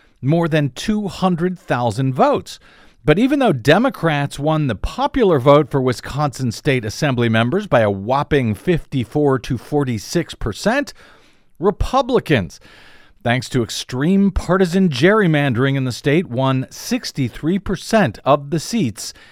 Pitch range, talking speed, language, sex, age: 130-180 Hz, 120 wpm, English, male, 50-69